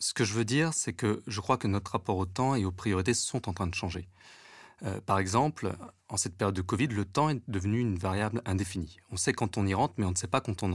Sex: male